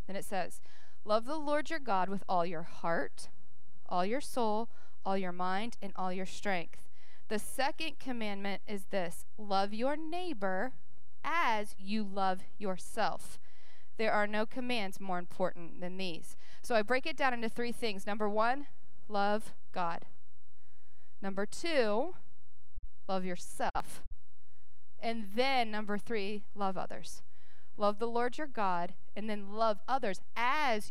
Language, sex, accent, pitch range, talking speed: English, female, American, 180-230 Hz, 145 wpm